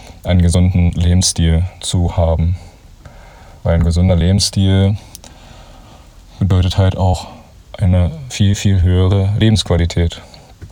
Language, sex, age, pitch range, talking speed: German, male, 30-49, 85-100 Hz, 95 wpm